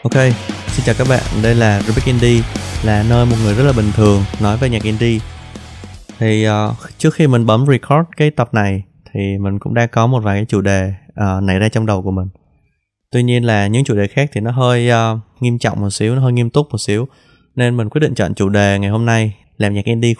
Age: 20-39